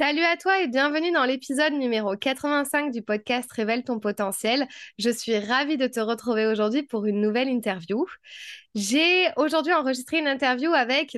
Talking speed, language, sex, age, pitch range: 175 wpm, French, female, 20-39, 215-275 Hz